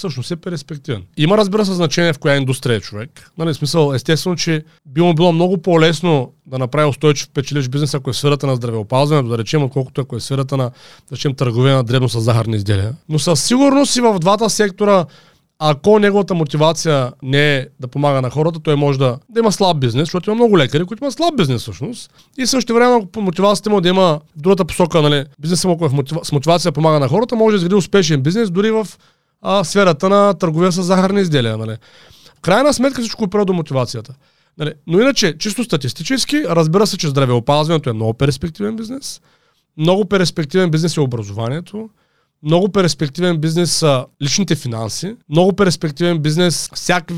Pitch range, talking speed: 140-195 Hz, 185 wpm